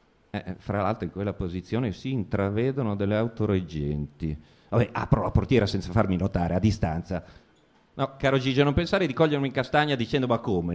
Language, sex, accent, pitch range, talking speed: Italian, male, native, 105-150 Hz, 180 wpm